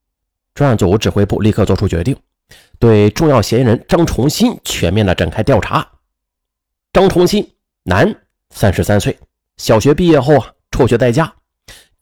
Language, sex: Chinese, male